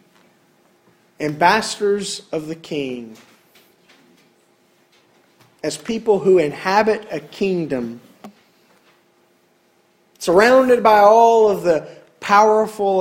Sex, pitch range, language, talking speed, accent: male, 150-205 Hz, English, 75 wpm, American